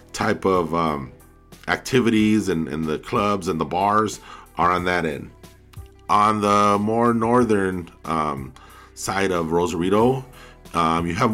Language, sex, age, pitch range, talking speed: English, male, 30-49, 85-115 Hz, 140 wpm